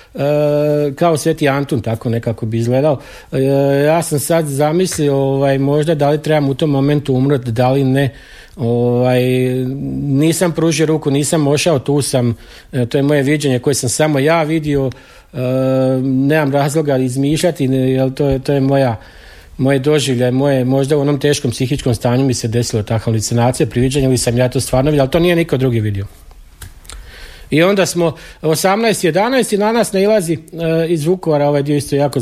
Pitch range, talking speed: 130-160 Hz, 175 wpm